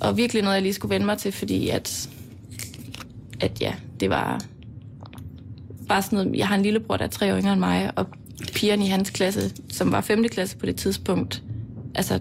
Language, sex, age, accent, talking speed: Danish, female, 20-39, native, 200 wpm